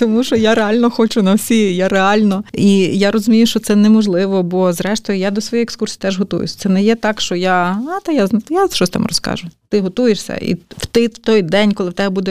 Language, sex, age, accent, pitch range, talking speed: Ukrainian, female, 30-49, native, 195-230 Hz, 225 wpm